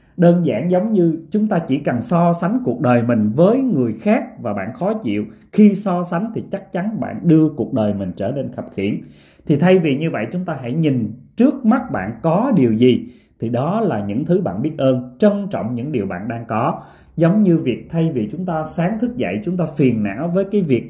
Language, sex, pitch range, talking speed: Vietnamese, male, 125-185 Hz, 235 wpm